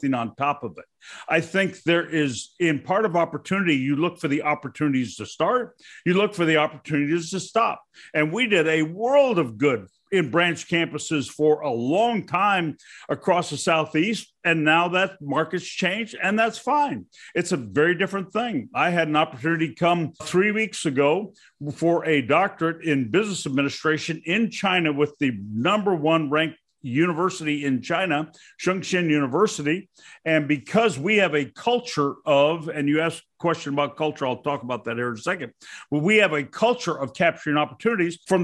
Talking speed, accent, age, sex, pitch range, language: 175 wpm, American, 50-69, male, 150-190 Hz, English